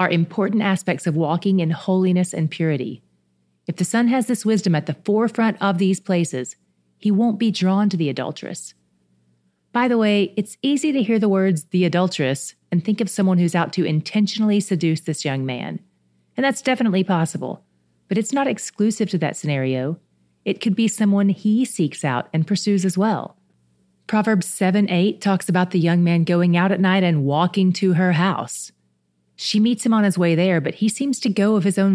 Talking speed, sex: 195 wpm, female